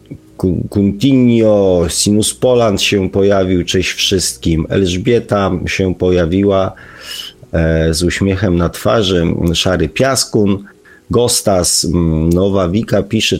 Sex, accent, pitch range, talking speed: male, native, 80-100 Hz, 90 wpm